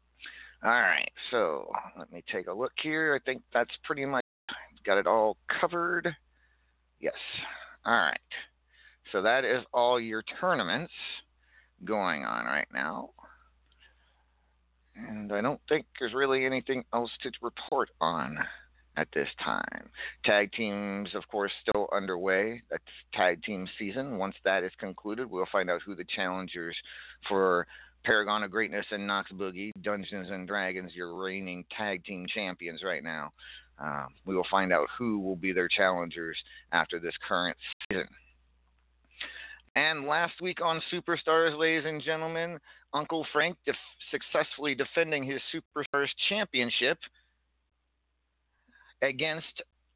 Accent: American